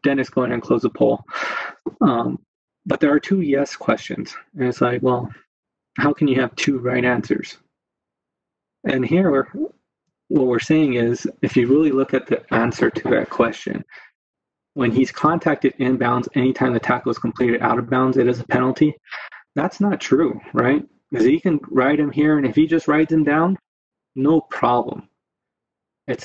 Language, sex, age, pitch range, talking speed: English, male, 20-39, 125-150 Hz, 175 wpm